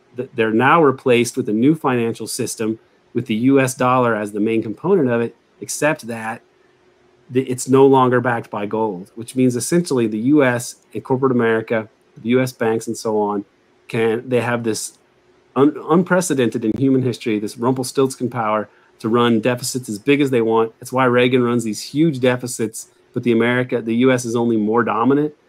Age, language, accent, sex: 30-49, English, American, male